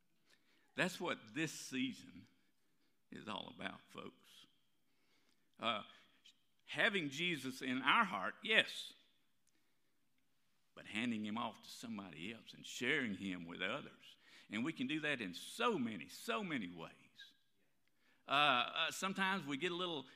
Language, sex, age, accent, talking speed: English, male, 50-69, American, 130 wpm